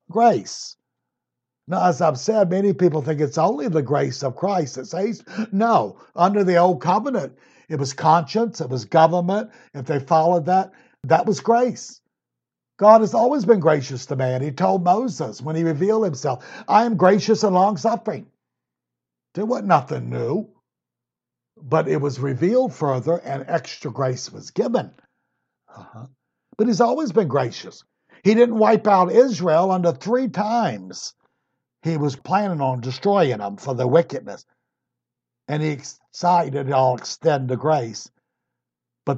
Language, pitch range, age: English, 130-195 Hz, 60-79